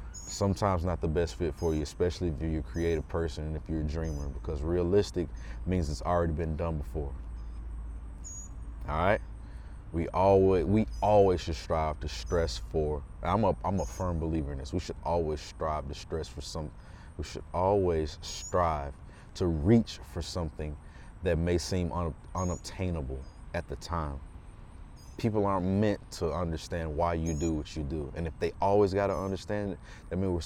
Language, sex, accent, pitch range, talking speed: English, male, American, 75-90 Hz, 175 wpm